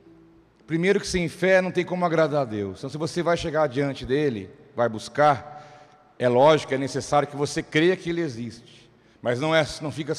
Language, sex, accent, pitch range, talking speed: Portuguese, male, Brazilian, 135-165 Hz, 200 wpm